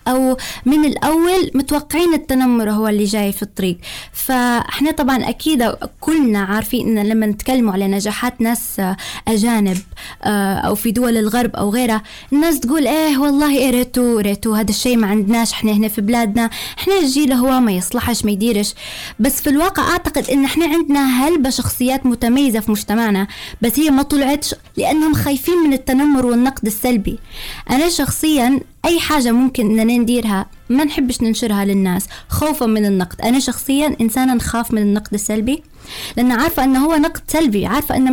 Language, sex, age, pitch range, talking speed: Arabic, female, 20-39, 220-280 Hz, 160 wpm